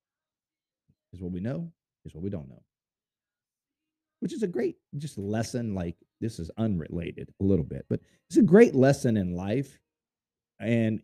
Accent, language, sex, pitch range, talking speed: American, English, male, 110-175 Hz, 165 wpm